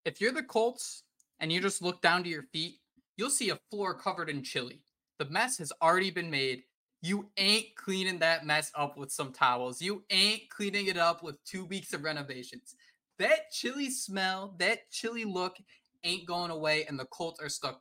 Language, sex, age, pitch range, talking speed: English, male, 20-39, 135-180 Hz, 195 wpm